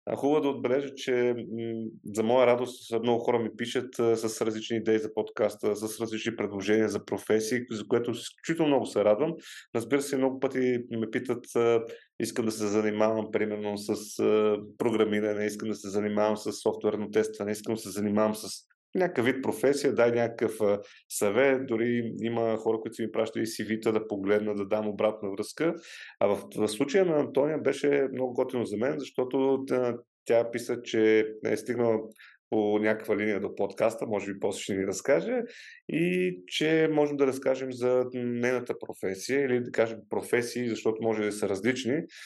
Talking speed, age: 170 wpm, 30-49